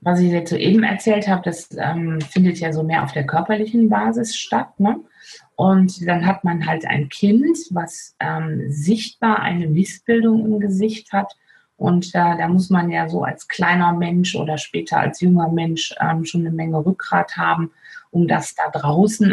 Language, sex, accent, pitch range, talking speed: German, female, German, 165-200 Hz, 180 wpm